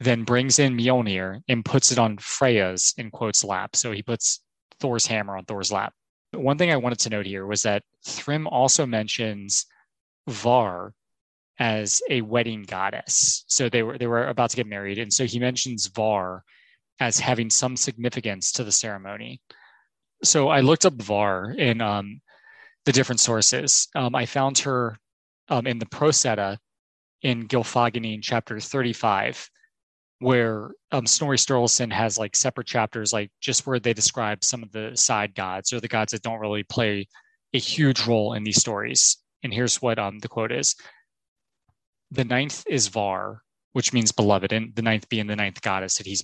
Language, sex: English, male